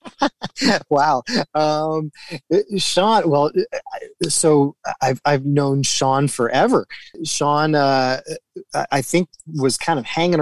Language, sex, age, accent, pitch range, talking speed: English, male, 30-49, American, 125-150 Hz, 105 wpm